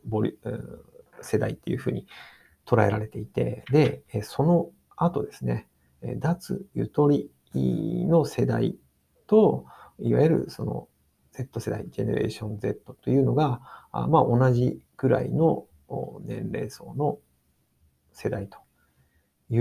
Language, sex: Japanese, male